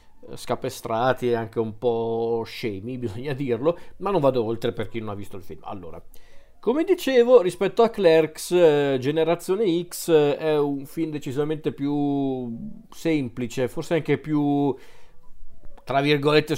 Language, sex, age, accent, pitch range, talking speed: Italian, male, 40-59, native, 125-160 Hz, 140 wpm